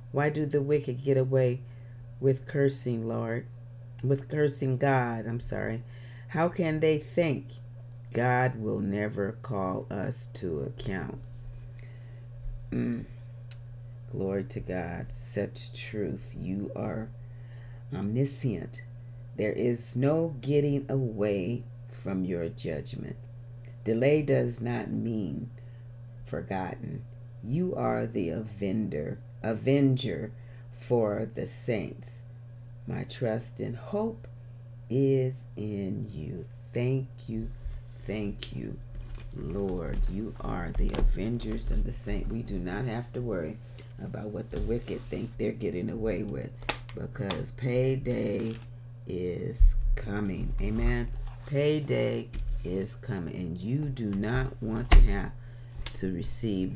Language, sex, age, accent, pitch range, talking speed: English, female, 40-59, American, 110-125 Hz, 110 wpm